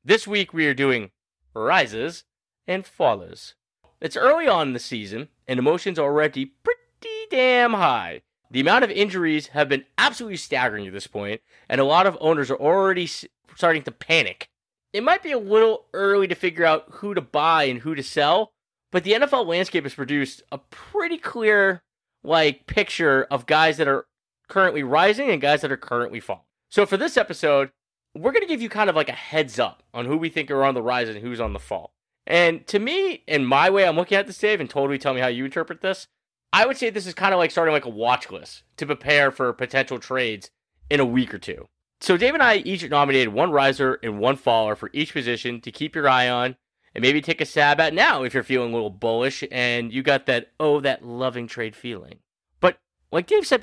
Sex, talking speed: male, 220 wpm